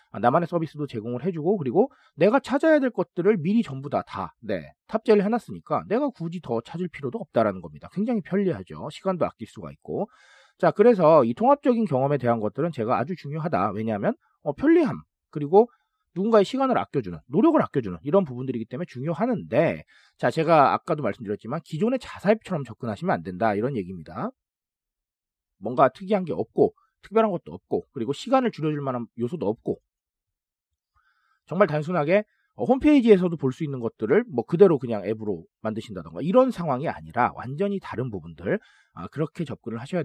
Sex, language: male, Korean